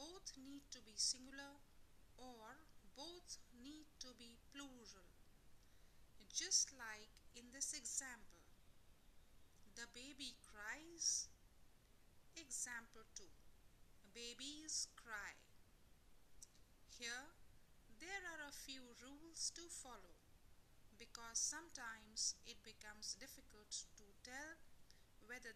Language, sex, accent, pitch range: English, female, Indian, 235-305 Hz